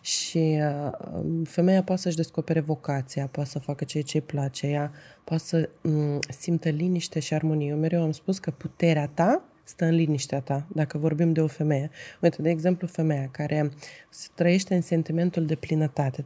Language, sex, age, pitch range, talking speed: Romanian, female, 20-39, 155-190 Hz, 160 wpm